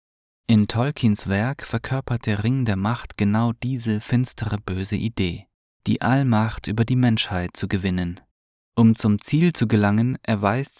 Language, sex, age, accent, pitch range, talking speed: English, male, 20-39, German, 100-120 Hz, 145 wpm